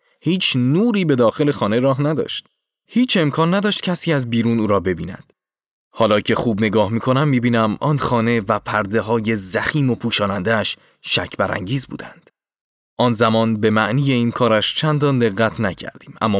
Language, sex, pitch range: Persian, male, 105-140 Hz